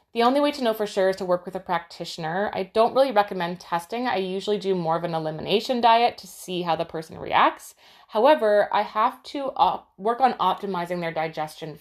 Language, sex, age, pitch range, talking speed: English, female, 20-39, 165-205 Hz, 215 wpm